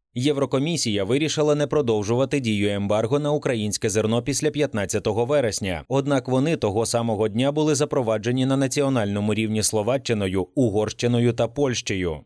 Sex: male